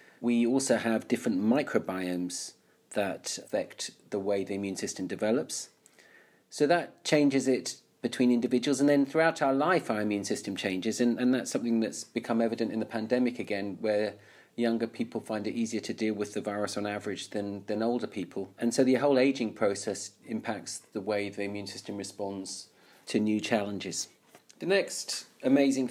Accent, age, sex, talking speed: British, 40-59, male, 175 wpm